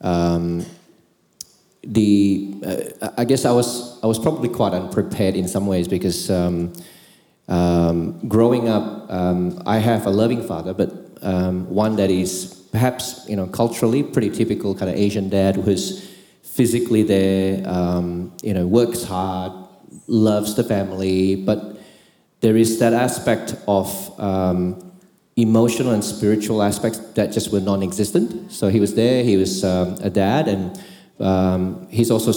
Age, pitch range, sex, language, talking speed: 30-49, 95-115 Hz, male, English, 150 wpm